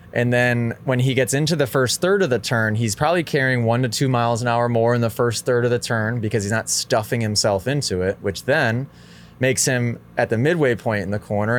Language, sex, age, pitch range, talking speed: English, male, 20-39, 100-130 Hz, 245 wpm